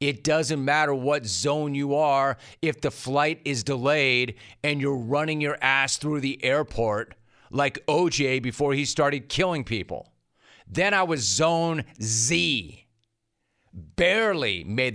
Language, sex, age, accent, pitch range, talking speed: English, male, 40-59, American, 120-160 Hz, 135 wpm